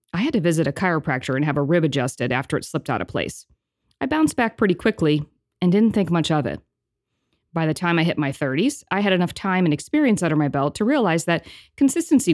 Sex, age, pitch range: female, 40-59, 150-195 Hz